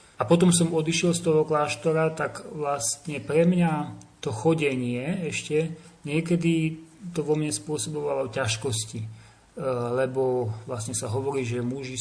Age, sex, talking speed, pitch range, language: 40-59, male, 130 wpm, 125-165 Hz, Slovak